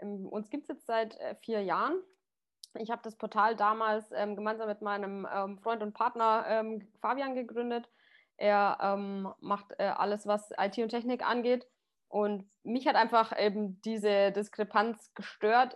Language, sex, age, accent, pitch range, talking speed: German, female, 20-39, German, 200-235 Hz, 160 wpm